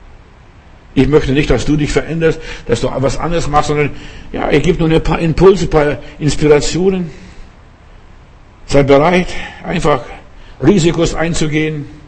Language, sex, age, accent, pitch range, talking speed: German, male, 60-79, German, 125-165 Hz, 140 wpm